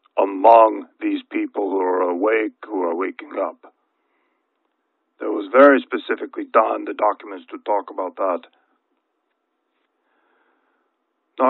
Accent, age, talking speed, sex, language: American, 50-69, 115 wpm, male, English